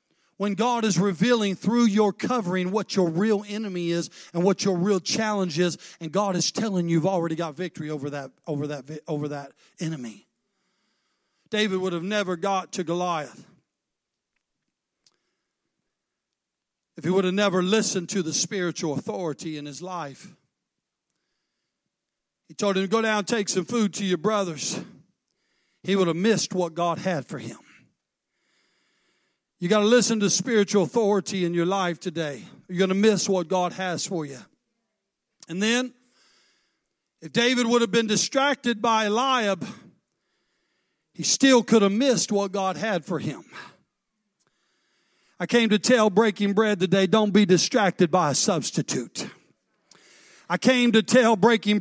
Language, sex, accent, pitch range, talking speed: English, male, American, 175-220 Hz, 150 wpm